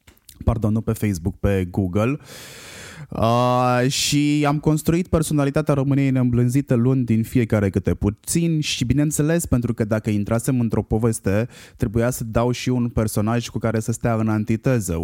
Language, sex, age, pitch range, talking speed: Romanian, male, 20-39, 105-130 Hz, 150 wpm